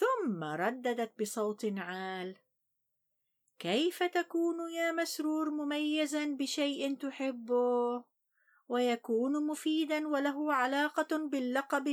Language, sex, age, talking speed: Arabic, female, 50-69, 80 wpm